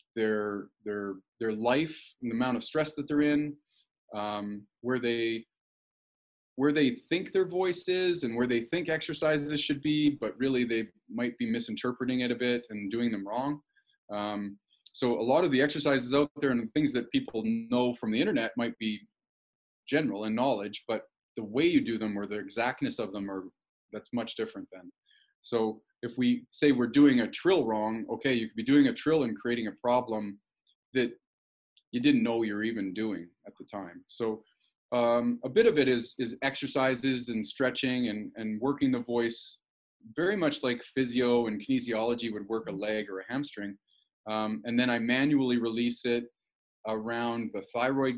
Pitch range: 110-140 Hz